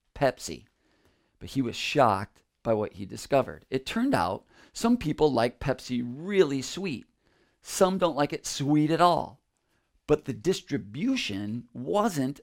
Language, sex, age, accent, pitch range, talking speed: English, male, 40-59, American, 110-155 Hz, 140 wpm